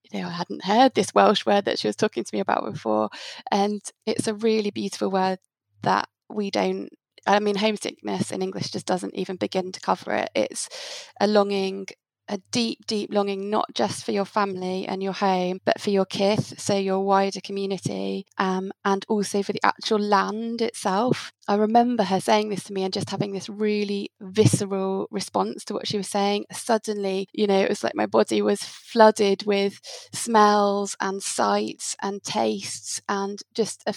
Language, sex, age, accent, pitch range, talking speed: English, female, 20-39, British, 190-215 Hz, 185 wpm